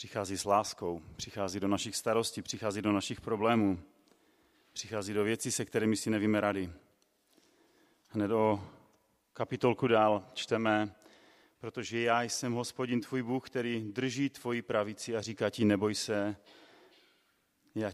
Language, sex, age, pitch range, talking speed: Czech, male, 30-49, 100-115 Hz, 135 wpm